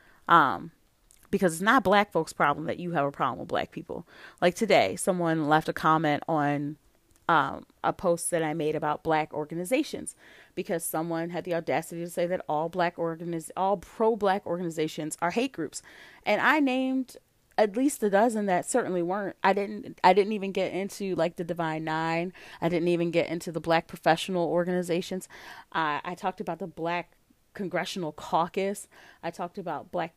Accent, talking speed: American, 180 wpm